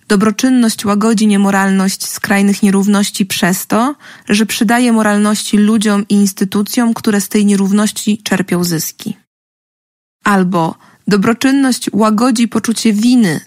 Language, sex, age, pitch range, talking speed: Polish, female, 20-39, 200-235 Hz, 105 wpm